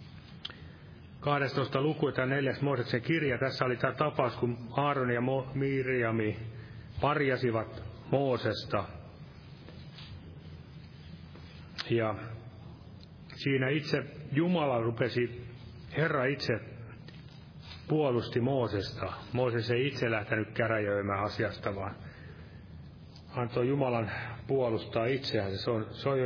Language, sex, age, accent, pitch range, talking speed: Finnish, male, 30-49, native, 110-135 Hz, 90 wpm